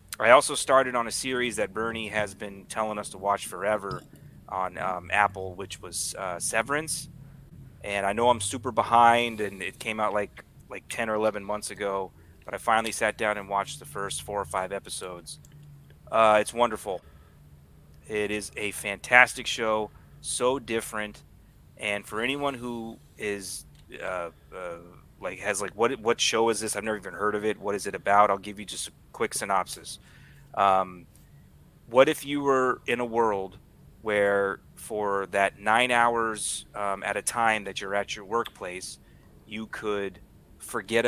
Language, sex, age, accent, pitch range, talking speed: English, male, 30-49, American, 100-120 Hz, 170 wpm